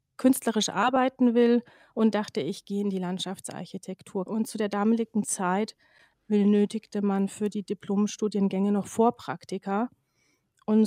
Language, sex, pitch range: German, female, 195-230 Hz